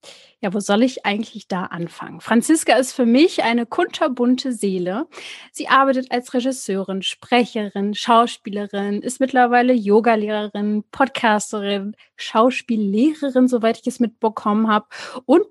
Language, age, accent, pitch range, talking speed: German, 30-49, German, 215-270 Hz, 120 wpm